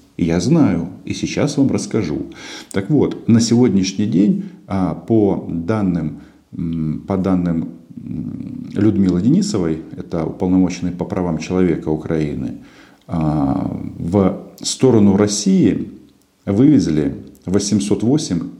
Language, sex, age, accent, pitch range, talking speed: Russian, male, 50-69, native, 85-105 Hz, 85 wpm